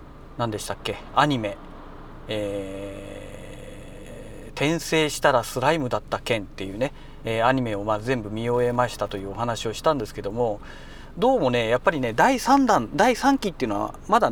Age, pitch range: 40-59, 115-155 Hz